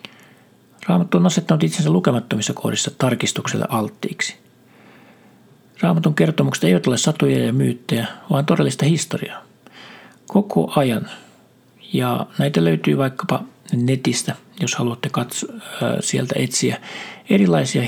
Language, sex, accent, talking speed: Finnish, male, native, 105 wpm